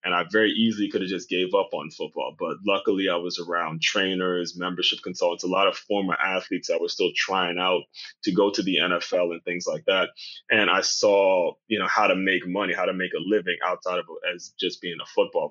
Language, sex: English, male